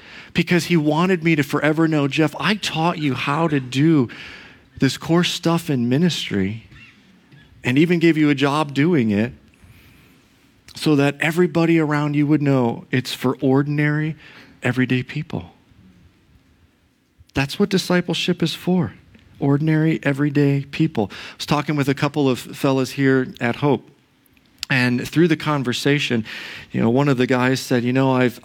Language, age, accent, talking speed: English, 40-59, American, 150 wpm